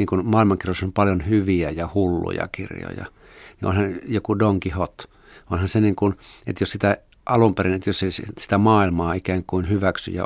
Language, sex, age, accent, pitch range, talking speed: Finnish, male, 50-69, native, 90-105 Hz, 175 wpm